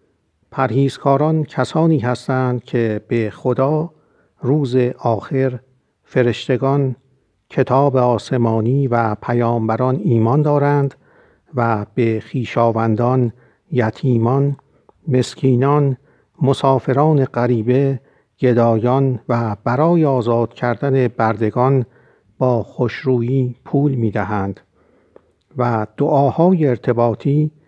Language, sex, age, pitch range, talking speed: Persian, male, 50-69, 115-140 Hz, 80 wpm